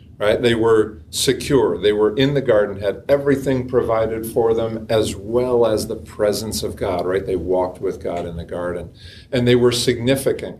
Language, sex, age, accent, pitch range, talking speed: English, male, 50-69, American, 95-120 Hz, 185 wpm